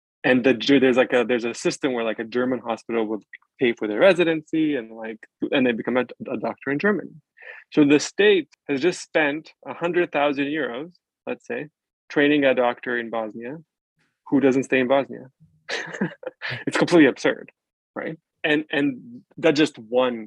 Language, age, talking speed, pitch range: English, 20-39, 175 wpm, 115-150 Hz